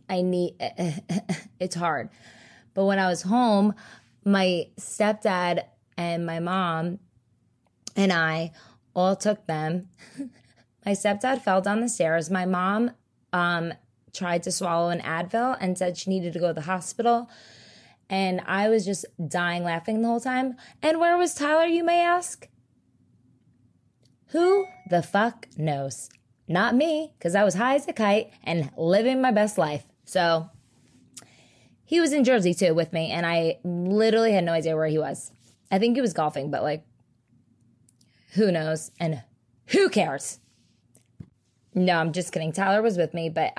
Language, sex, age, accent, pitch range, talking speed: English, female, 20-39, American, 160-220 Hz, 155 wpm